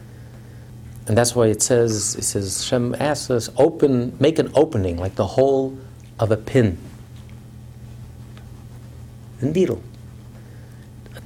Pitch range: 115-135 Hz